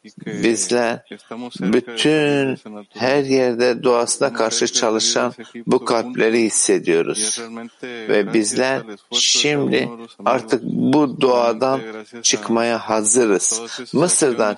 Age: 60-79